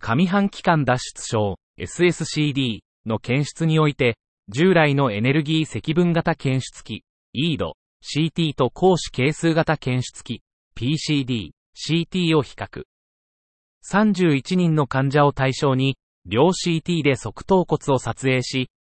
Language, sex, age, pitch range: Japanese, male, 30-49, 130-175 Hz